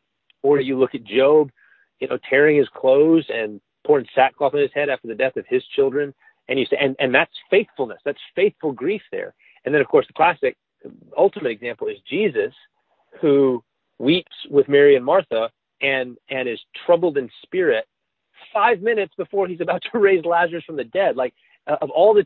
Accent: American